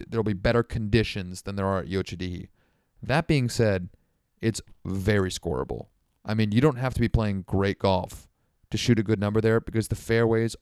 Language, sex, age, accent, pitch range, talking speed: English, male, 30-49, American, 100-125 Hz, 190 wpm